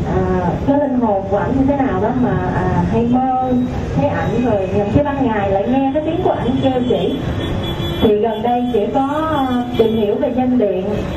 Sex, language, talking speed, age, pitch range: female, Vietnamese, 210 wpm, 20-39, 205-255 Hz